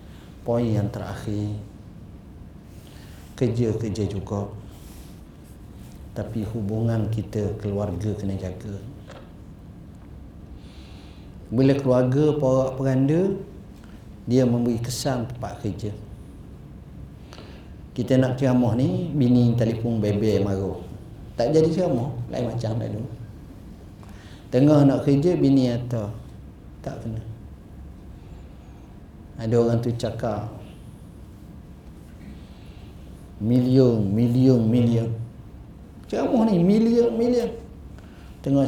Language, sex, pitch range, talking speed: Malay, male, 105-150 Hz, 80 wpm